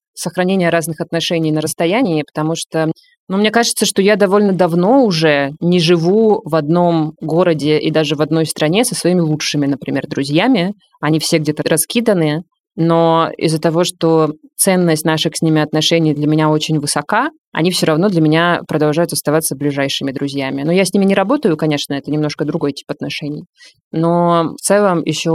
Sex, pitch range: female, 155-175 Hz